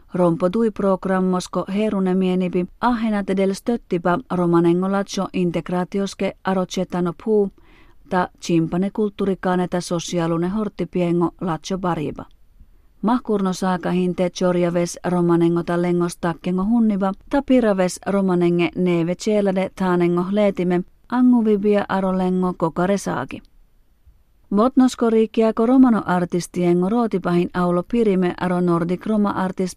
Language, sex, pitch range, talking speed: Finnish, female, 175-205 Hz, 90 wpm